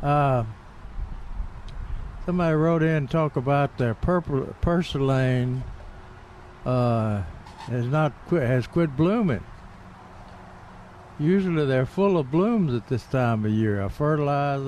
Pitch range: 105-140 Hz